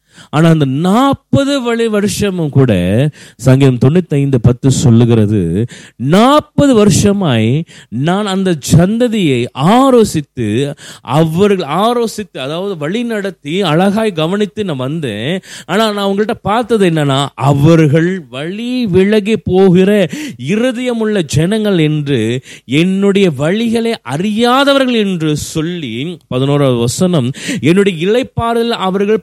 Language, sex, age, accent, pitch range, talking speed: Tamil, male, 30-49, native, 150-220 Hz, 80 wpm